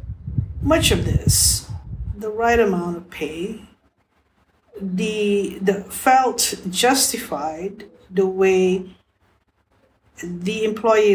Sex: female